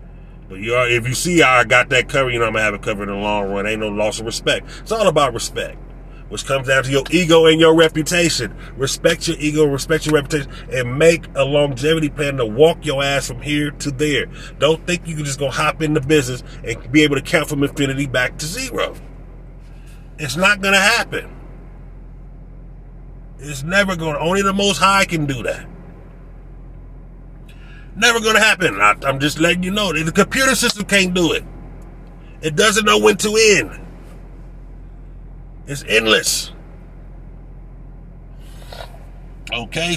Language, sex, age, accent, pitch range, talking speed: English, male, 30-49, American, 135-165 Hz, 180 wpm